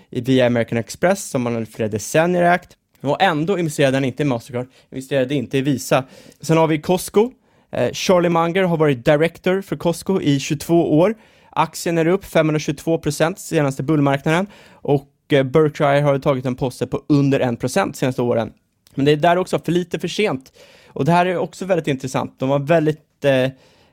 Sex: male